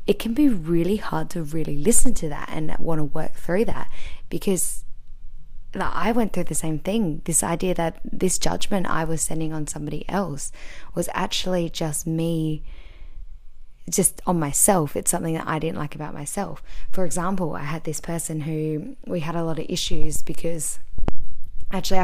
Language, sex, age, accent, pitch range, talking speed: English, female, 10-29, Australian, 150-170 Hz, 175 wpm